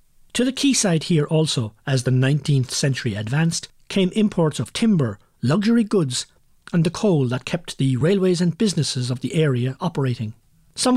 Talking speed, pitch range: 165 wpm, 135-185 Hz